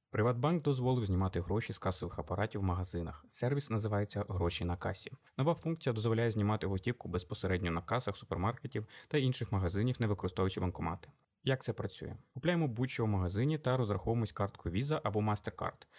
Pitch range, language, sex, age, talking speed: 95-120 Hz, Ukrainian, male, 20-39, 160 wpm